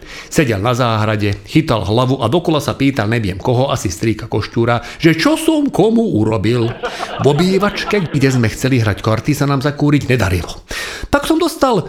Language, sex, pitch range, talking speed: Slovak, male, 125-185 Hz, 165 wpm